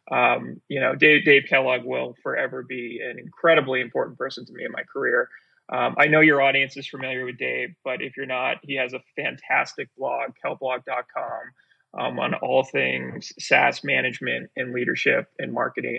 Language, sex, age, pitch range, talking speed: English, male, 30-49, 130-180 Hz, 175 wpm